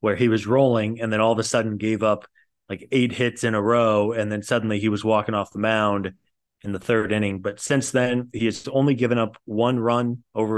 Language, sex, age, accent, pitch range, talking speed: English, male, 30-49, American, 110-125 Hz, 240 wpm